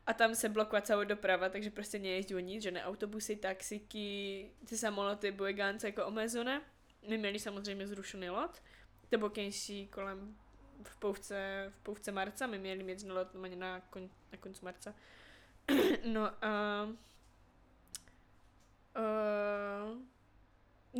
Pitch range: 190-215 Hz